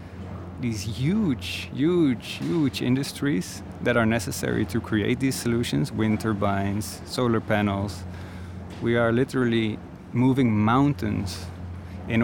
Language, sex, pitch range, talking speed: Dutch, male, 95-115 Hz, 100 wpm